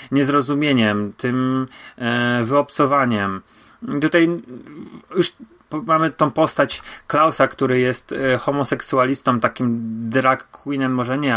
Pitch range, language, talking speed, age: 125-155 Hz, Polish, 90 wpm, 30-49